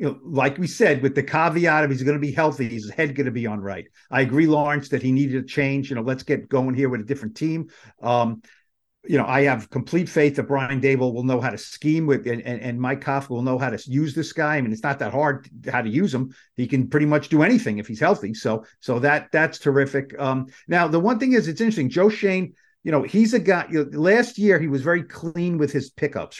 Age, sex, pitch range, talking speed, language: 50-69, male, 135-190 Hz, 265 wpm, English